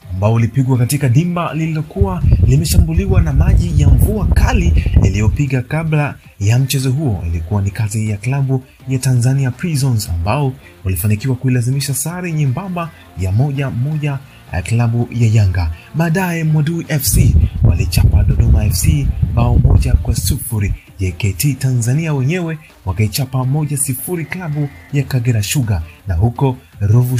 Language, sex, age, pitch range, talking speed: English, male, 30-49, 100-140 Hz, 130 wpm